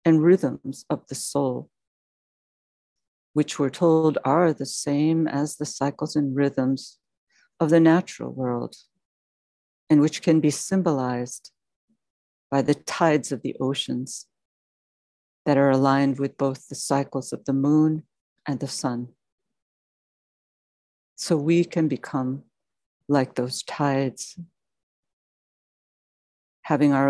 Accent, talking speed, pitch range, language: American, 115 wpm, 130-150 Hz, English